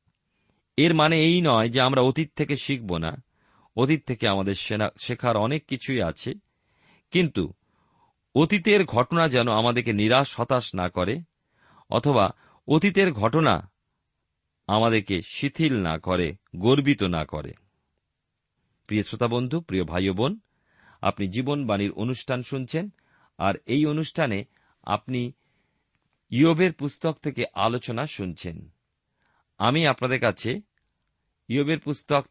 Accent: native